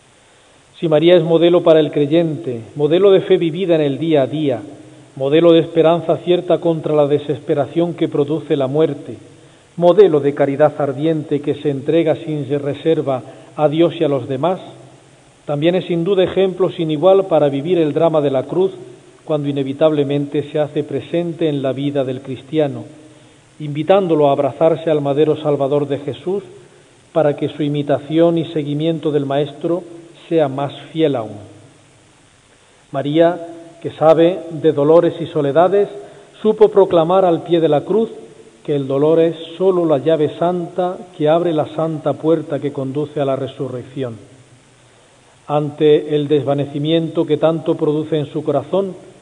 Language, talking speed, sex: Spanish, 155 wpm, male